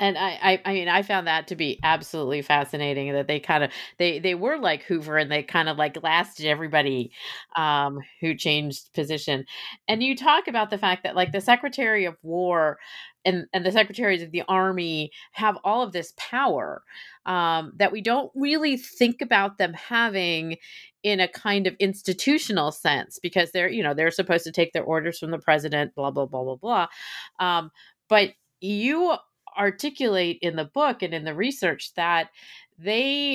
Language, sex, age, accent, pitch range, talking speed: English, female, 30-49, American, 165-210 Hz, 180 wpm